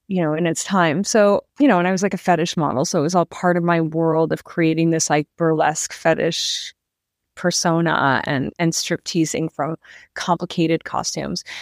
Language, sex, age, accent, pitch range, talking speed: English, female, 30-49, American, 170-205 Hz, 190 wpm